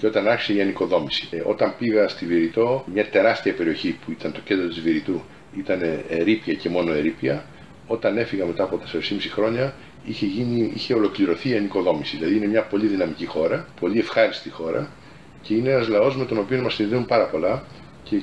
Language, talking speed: Greek, 190 wpm